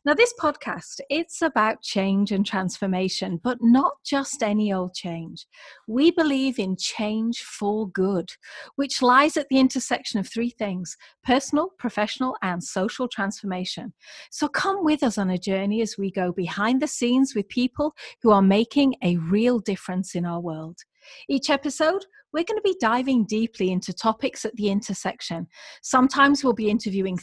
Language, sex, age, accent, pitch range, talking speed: English, female, 40-59, British, 190-260 Hz, 165 wpm